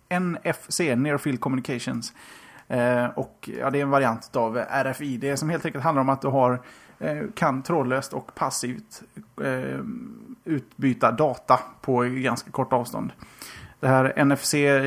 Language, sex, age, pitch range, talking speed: Swedish, male, 30-49, 125-155 Hz, 145 wpm